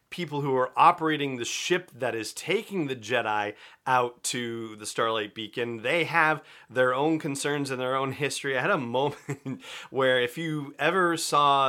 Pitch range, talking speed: 110-140 Hz, 175 wpm